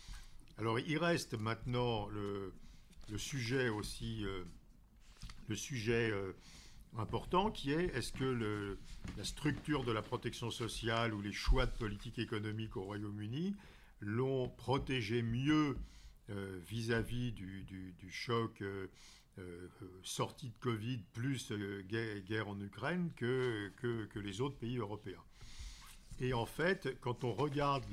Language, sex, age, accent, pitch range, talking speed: French, male, 50-69, French, 105-130 Hz, 140 wpm